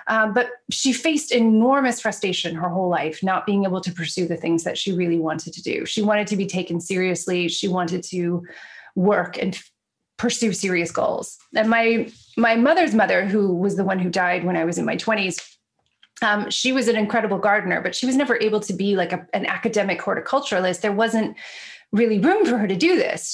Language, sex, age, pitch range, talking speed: English, female, 30-49, 185-235 Hz, 210 wpm